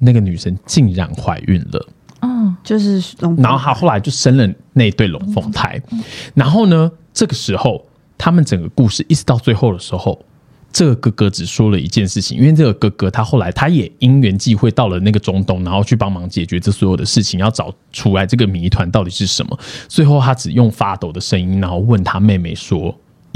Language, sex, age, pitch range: Chinese, male, 20-39, 95-130 Hz